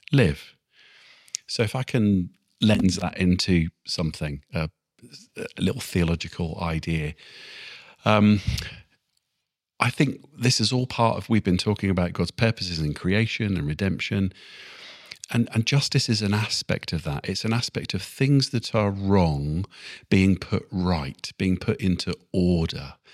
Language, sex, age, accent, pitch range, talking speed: English, male, 50-69, British, 85-115 Hz, 145 wpm